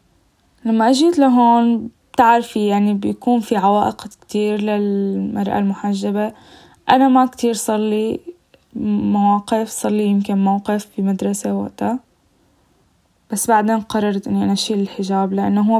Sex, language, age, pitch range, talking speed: female, Arabic, 10-29, 200-235 Hz, 115 wpm